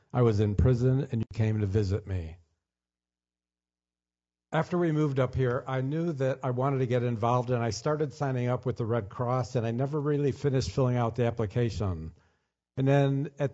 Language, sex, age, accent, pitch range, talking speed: English, male, 50-69, American, 110-140 Hz, 195 wpm